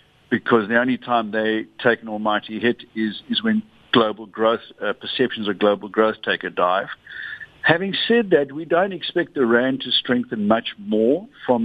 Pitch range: 115-155 Hz